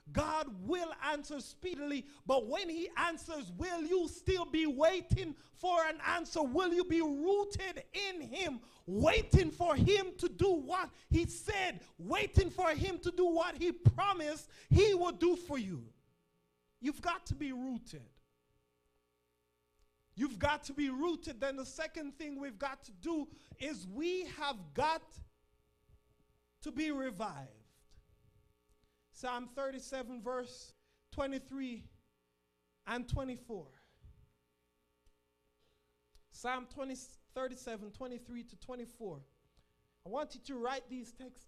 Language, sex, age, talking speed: English, male, 30-49, 125 wpm